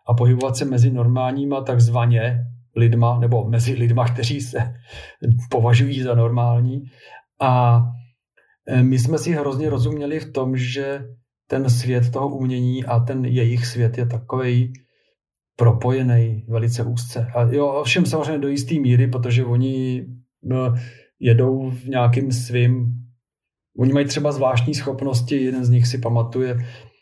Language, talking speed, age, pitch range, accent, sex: Czech, 135 wpm, 40-59, 120-130 Hz, native, male